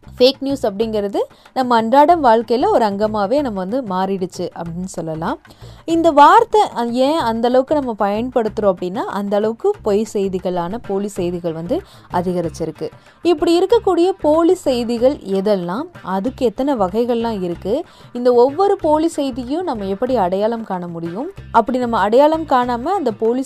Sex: female